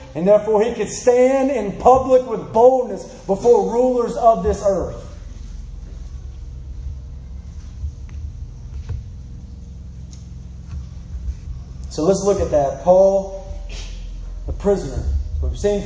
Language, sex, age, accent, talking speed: English, male, 30-49, American, 90 wpm